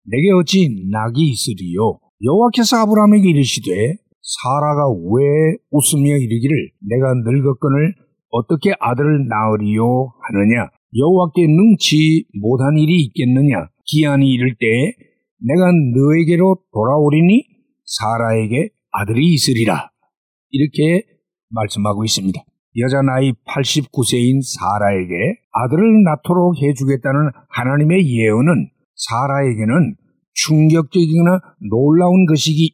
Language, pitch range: Korean, 130-180 Hz